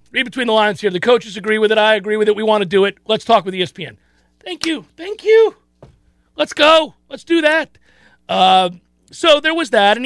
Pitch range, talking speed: 180-230 Hz, 225 wpm